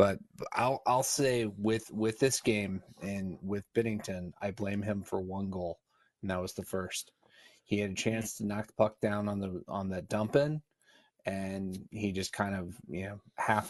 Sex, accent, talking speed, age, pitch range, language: male, American, 195 wpm, 30-49, 95-110 Hz, English